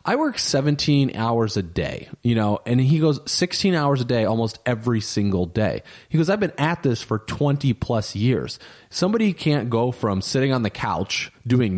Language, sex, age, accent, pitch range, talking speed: English, male, 30-49, American, 105-140 Hz, 195 wpm